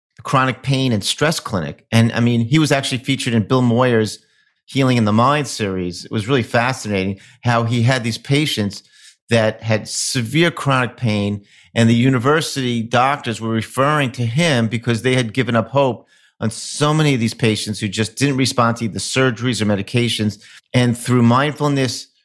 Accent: American